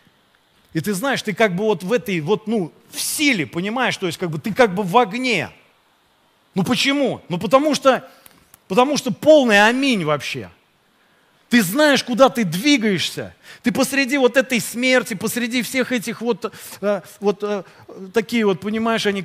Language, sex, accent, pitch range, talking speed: Russian, male, native, 205-265 Hz, 170 wpm